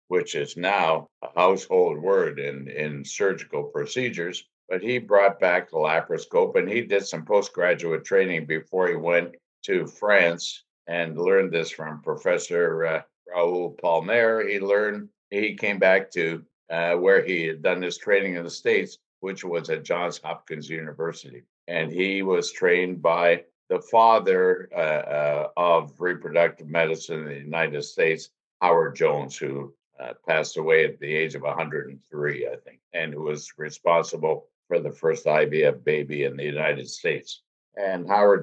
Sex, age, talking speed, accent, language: male, 60-79, 160 wpm, American, English